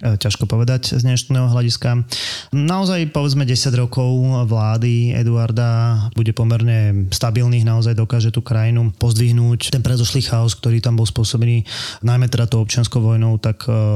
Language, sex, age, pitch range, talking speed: Slovak, male, 20-39, 115-130 Hz, 140 wpm